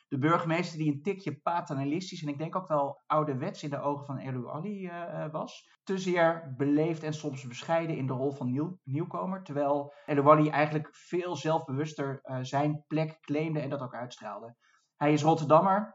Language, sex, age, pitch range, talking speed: Dutch, male, 20-39, 135-160 Hz, 180 wpm